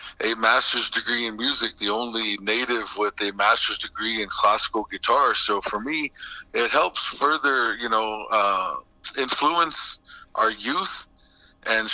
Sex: male